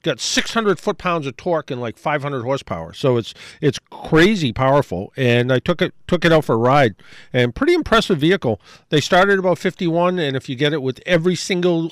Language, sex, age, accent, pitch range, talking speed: English, male, 50-69, American, 120-155 Hz, 210 wpm